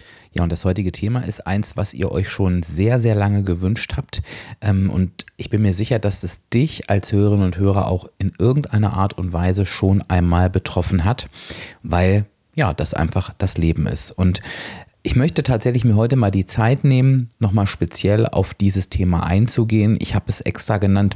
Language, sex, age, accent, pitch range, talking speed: German, male, 30-49, German, 95-115 Hz, 185 wpm